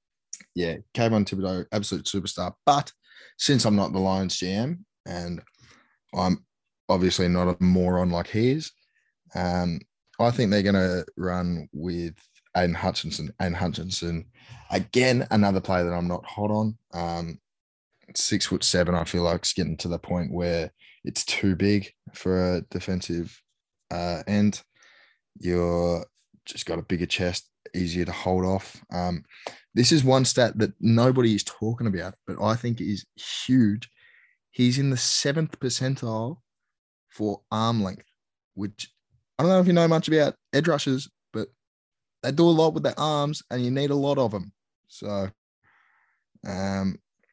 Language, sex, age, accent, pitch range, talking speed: English, male, 10-29, Australian, 90-120 Hz, 155 wpm